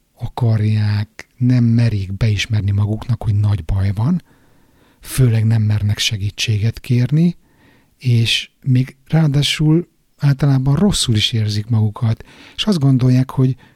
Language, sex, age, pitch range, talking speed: Hungarian, male, 60-79, 105-125 Hz, 115 wpm